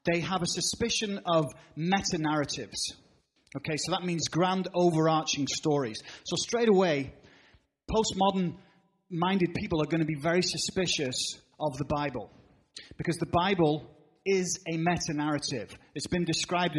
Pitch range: 150-180 Hz